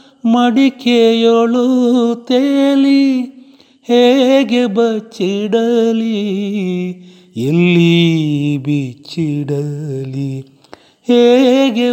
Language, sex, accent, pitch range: Kannada, male, native, 165-245 Hz